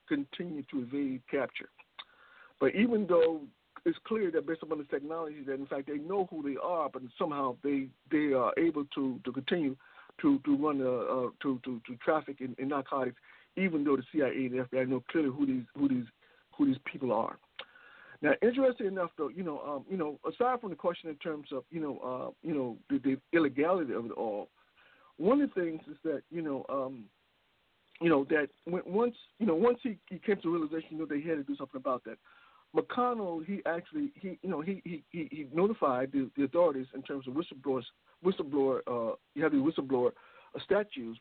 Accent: American